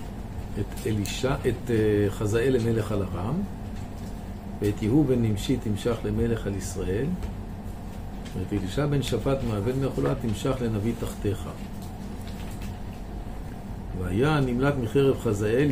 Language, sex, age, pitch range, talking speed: Hebrew, male, 50-69, 100-120 Hz, 105 wpm